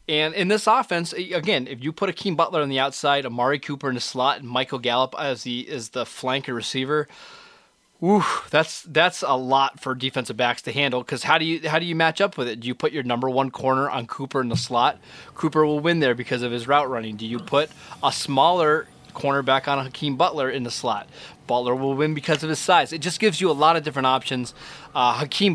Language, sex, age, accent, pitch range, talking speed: English, male, 20-39, American, 125-155 Hz, 240 wpm